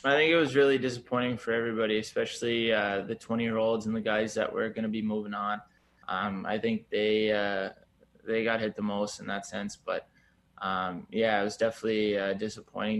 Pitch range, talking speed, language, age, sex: 100-110 Hz, 210 wpm, French, 20-39, male